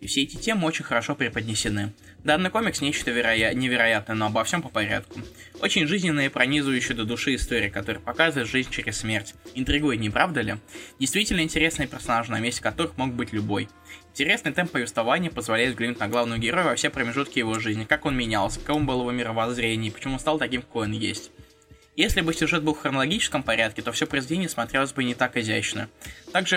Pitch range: 115-150 Hz